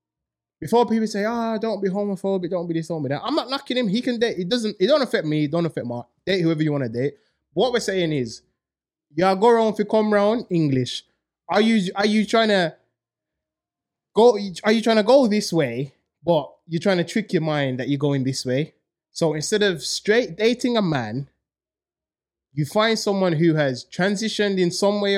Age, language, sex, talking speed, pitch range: 20-39, English, male, 215 wpm, 155-220 Hz